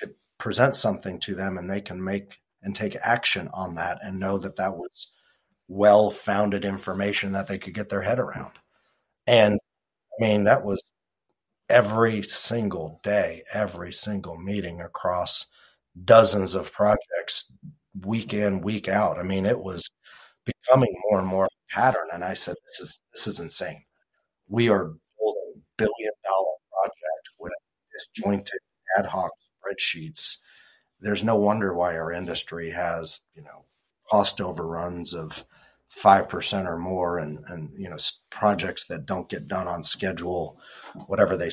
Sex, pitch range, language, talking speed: male, 90-105 Hz, English, 155 wpm